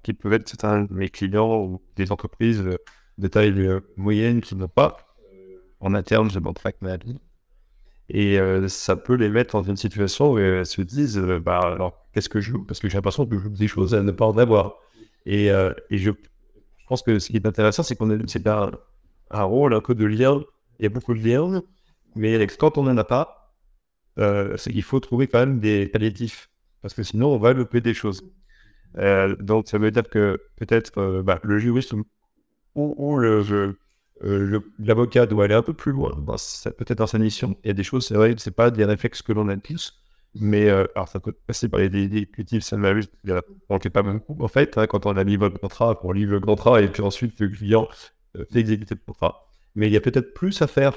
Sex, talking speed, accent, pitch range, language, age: male, 230 wpm, French, 100-120 Hz, French, 60-79